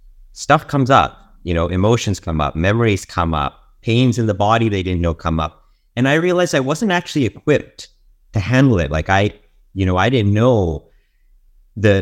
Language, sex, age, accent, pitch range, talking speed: English, male, 30-49, American, 85-105 Hz, 190 wpm